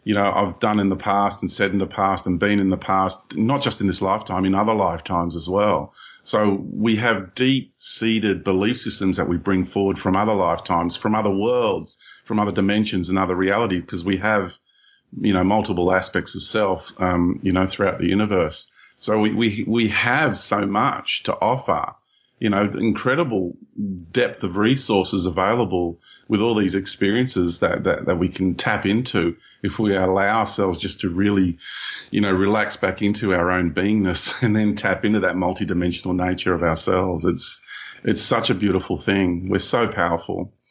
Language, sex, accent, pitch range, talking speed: English, male, Australian, 95-105 Hz, 185 wpm